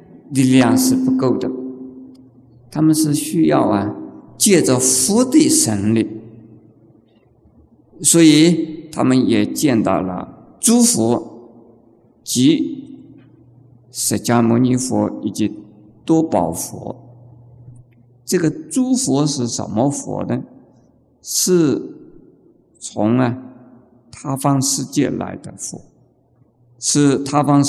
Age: 50-69